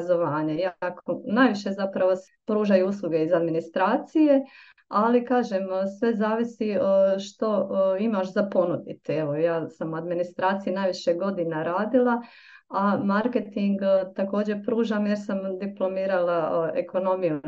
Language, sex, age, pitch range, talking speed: Croatian, female, 30-49, 175-215 Hz, 105 wpm